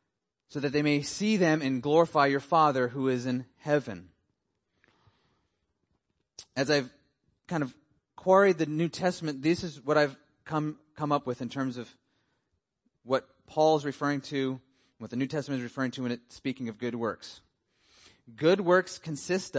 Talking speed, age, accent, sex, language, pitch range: 160 wpm, 30-49, American, male, English, 130-160 Hz